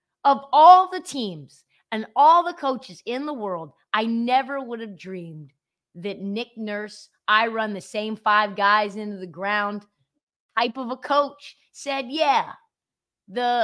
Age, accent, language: 30-49, American, English